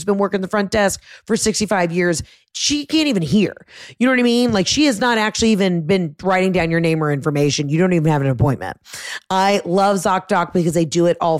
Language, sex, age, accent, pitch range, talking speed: English, female, 30-49, American, 160-210 Hz, 235 wpm